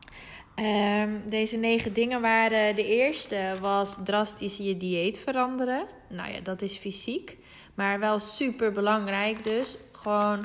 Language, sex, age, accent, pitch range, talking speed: Dutch, female, 20-39, Dutch, 195-235 Hz, 130 wpm